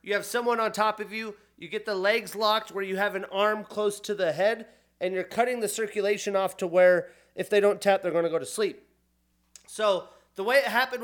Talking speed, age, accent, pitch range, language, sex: 240 wpm, 30-49, American, 180-220 Hz, English, male